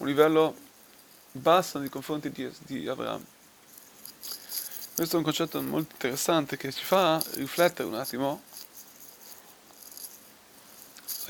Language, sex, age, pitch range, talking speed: Italian, male, 30-49, 140-170 Hz, 110 wpm